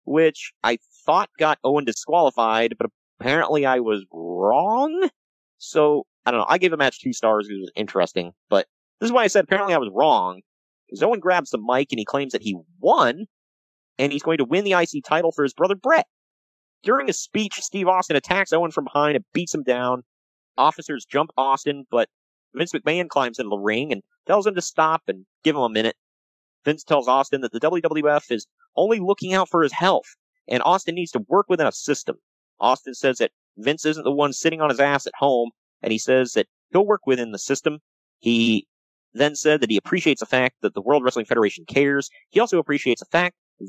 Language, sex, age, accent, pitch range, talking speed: English, male, 30-49, American, 125-175 Hz, 210 wpm